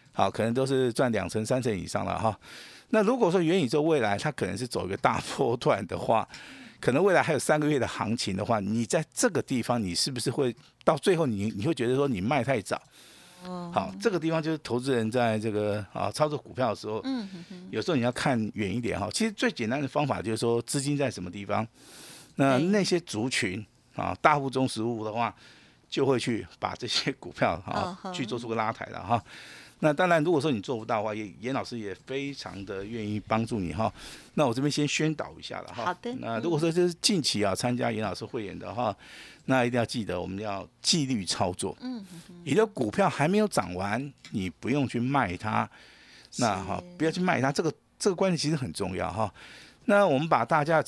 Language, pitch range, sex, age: Chinese, 110-160 Hz, male, 50-69